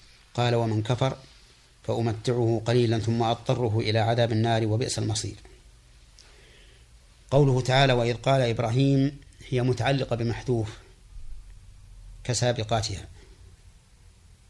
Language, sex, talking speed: Arabic, male, 85 wpm